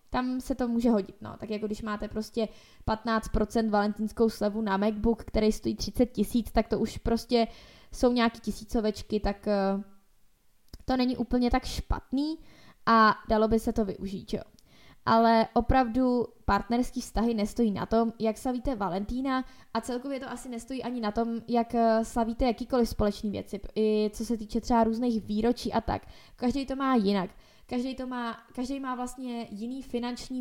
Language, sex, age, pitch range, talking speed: Czech, female, 20-39, 215-245 Hz, 160 wpm